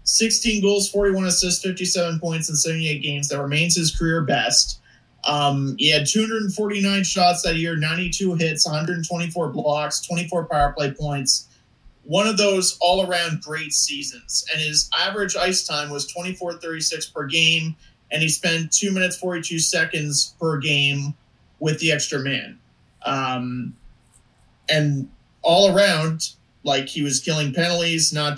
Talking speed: 140 wpm